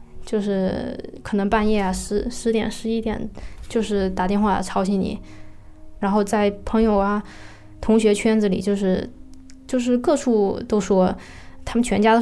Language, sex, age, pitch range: Chinese, female, 10-29, 195-230 Hz